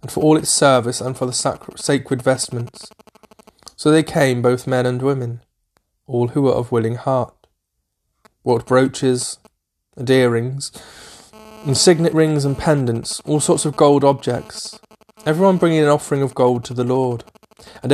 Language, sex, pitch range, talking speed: English, male, 125-150 Hz, 155 wpm